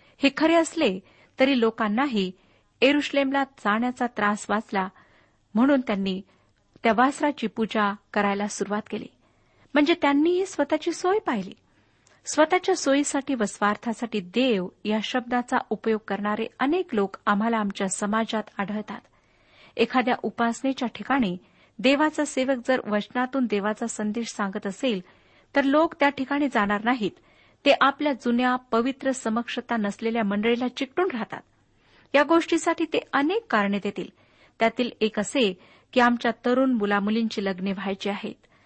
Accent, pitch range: native, 210-275 Hz